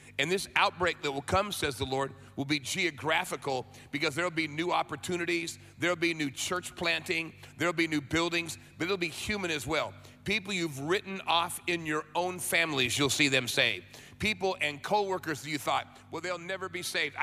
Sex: male